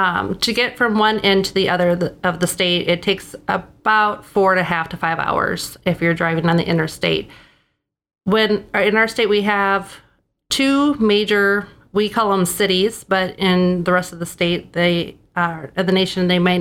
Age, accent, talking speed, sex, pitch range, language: 30-49, American, 190 wpm, female, 175-200 Hz, English